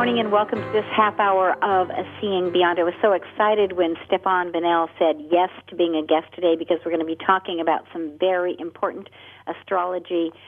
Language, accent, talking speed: English, American, 205 wpm